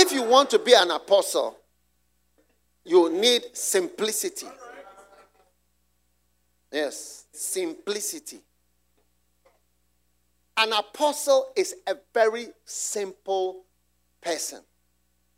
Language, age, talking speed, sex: English, 50-69, 75 wpm, male